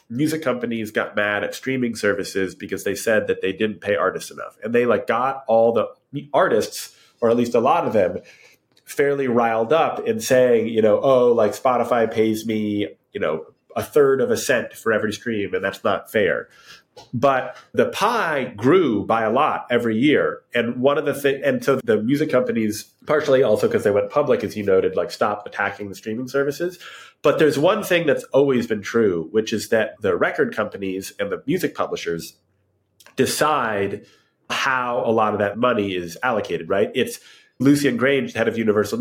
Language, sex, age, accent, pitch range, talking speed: English, male, 30-49, American, 110-160 Hz, 190 wpm